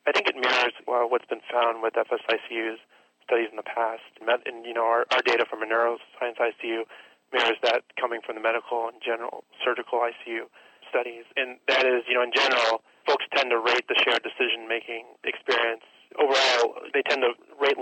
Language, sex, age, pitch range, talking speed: English, male, 30-49, 115-125 Hz, 185 wpm